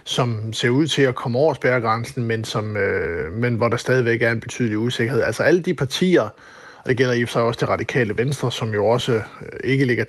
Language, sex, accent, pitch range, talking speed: Danish, male, native, 110-130 Hz, 215 wpm